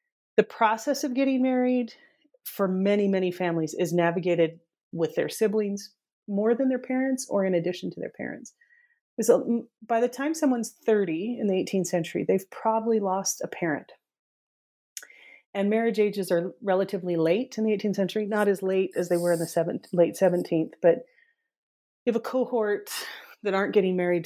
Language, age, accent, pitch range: English, 30-49, American, 175-230 Hz